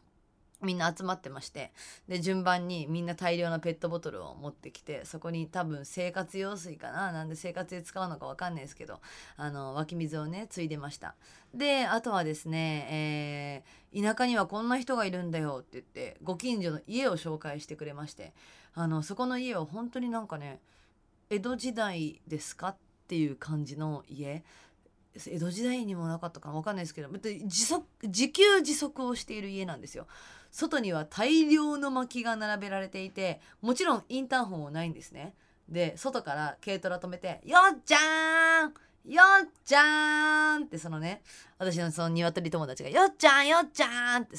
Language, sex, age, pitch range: Japanese, female, 20-39, 160-250 Hz